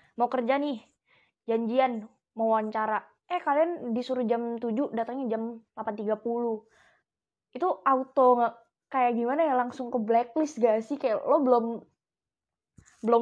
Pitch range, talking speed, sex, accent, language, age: 220-265 Hz, 130 wpm, female, native, Indonesian, 20-39